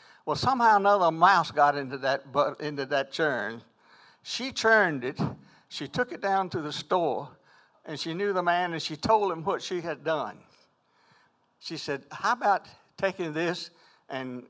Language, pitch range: English, 140-185 Hz